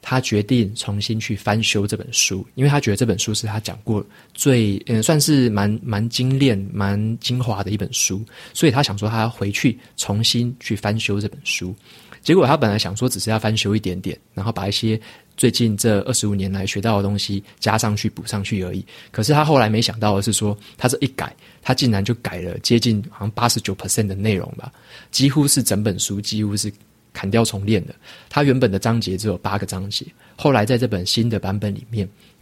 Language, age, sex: Chinese, 20-39, male